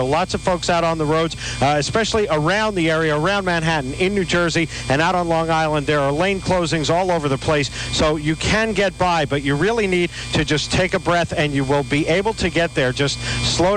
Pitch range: 145-180 Hz